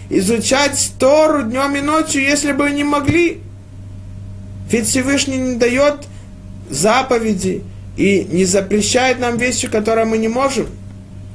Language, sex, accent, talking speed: Russian, male, native, 120 wpm